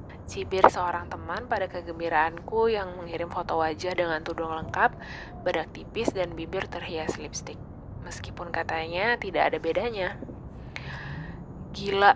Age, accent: 20-39, native